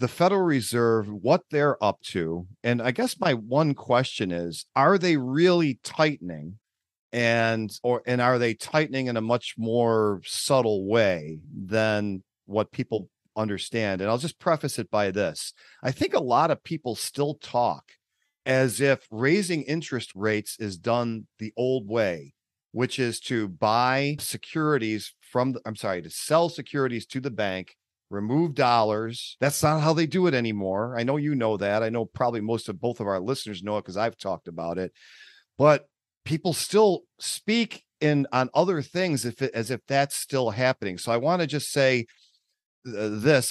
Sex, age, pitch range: male, 40-59, 110-140 Hz